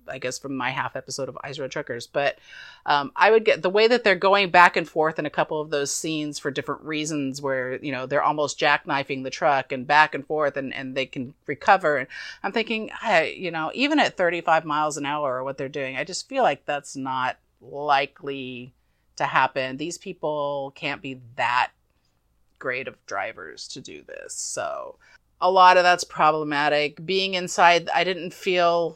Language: English